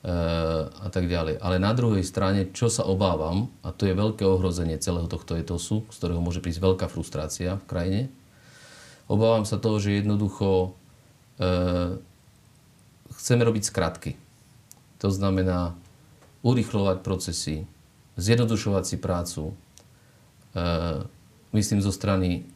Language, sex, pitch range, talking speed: Slovak, male, 90-105 Hz, 120 wpm